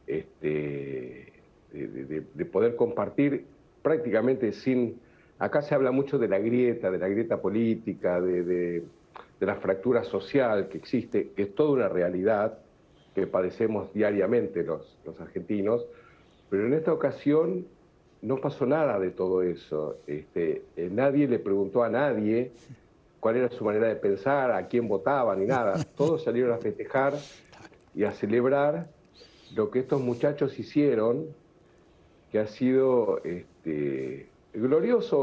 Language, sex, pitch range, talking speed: Spanish, male, 100-145 Hz, 140 wpm